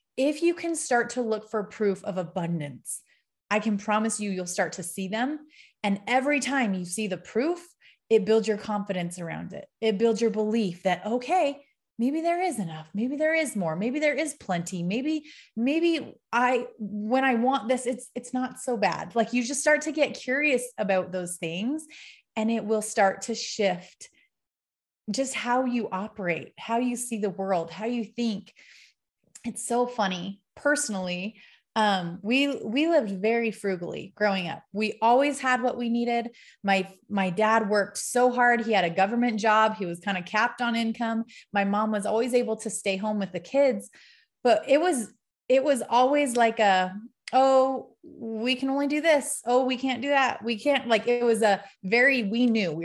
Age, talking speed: 30-49, 190 wpm